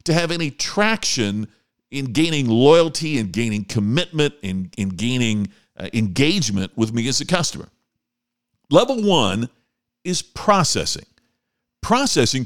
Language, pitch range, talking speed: English, 110-170 Hz, 120 wpm